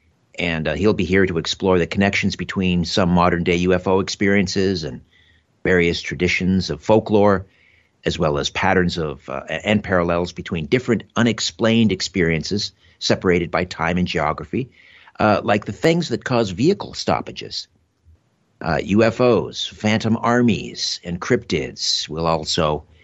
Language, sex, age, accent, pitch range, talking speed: English, male, 50-69, American, 85-110 Hz, 140 wpm